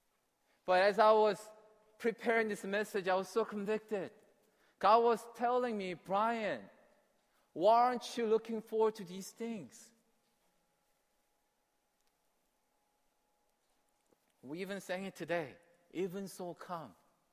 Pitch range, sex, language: 180-220 Hz, male, Korean